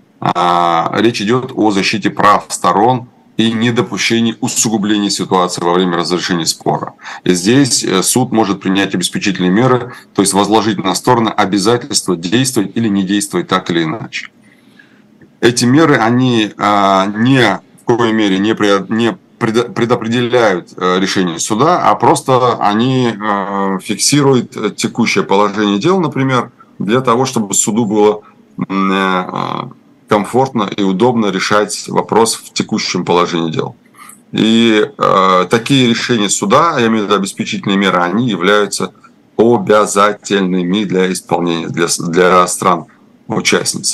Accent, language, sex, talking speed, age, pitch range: native, Russian, male, 120 wpm, 20-39, 95-115 Hz